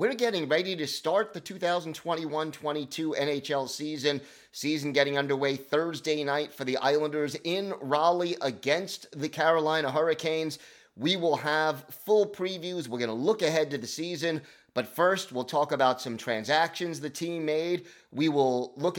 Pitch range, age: 130-165 Hz, 30-49